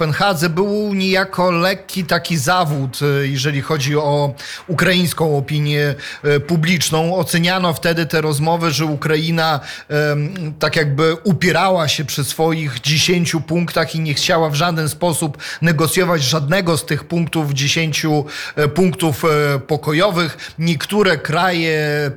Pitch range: 150-175 Hz